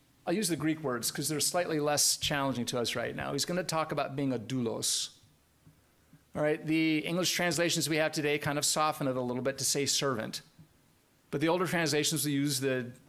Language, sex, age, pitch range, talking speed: English, male, 40-59, 135-160 Hz, 215 wpm